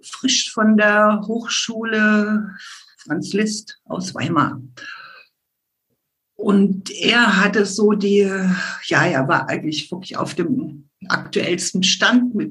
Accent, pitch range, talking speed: German, 175-215 Hz, 110 wpm